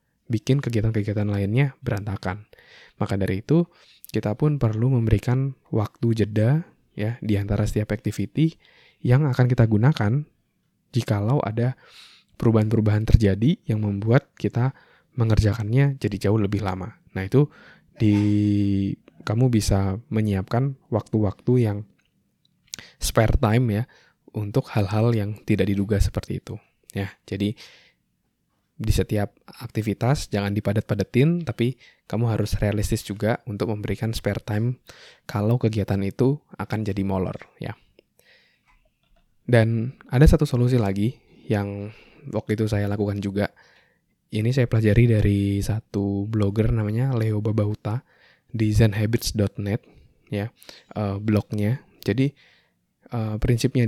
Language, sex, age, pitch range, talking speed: Indonesian, male, 20-39, 105-125 Hz, 110 wpm